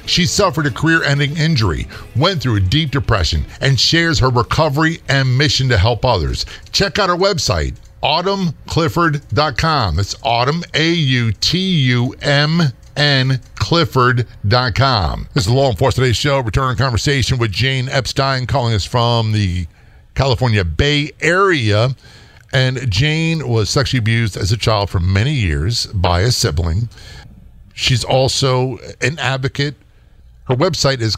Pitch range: 110-145 Hz